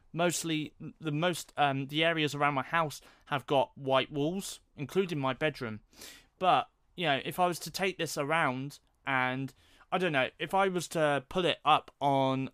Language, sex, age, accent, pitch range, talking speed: English, male, 30-49, British, 135-170 Hz, 180 wpm